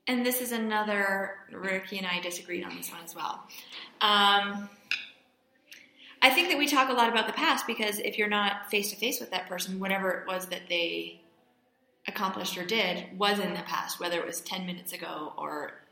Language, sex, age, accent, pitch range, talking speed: English, female, 20-39, American, 170-225 Hz, 190 wpm